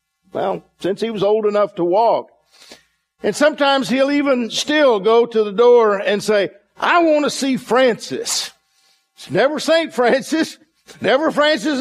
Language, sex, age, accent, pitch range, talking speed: English, male, 50-69, American, 155-230 Hz, 150 wpm